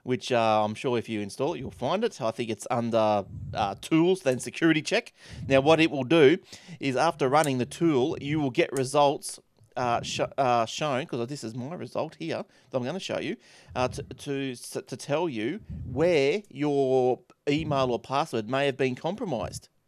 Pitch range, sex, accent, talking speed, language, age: 120-150 Hz, male, Australian, 200 wpm, English, 30-49